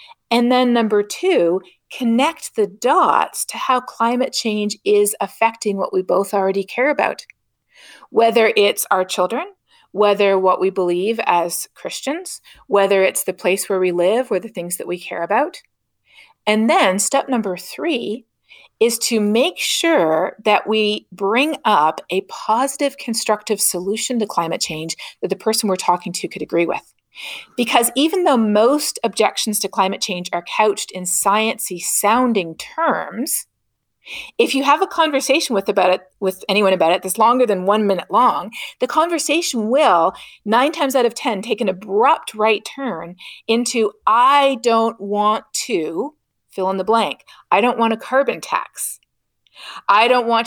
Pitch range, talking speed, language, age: 190-250 Hz, 160 wpm, English, 40-59